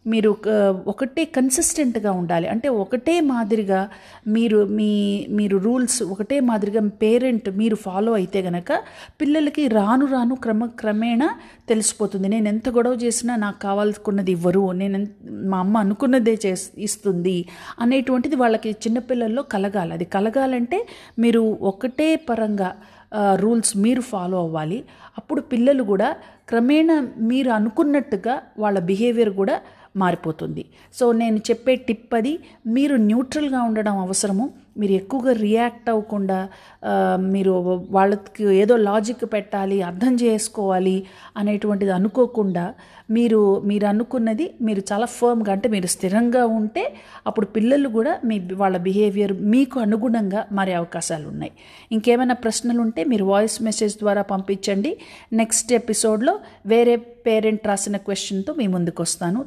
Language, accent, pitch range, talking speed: Telugu, native, 195-240 Hz, 120 wpm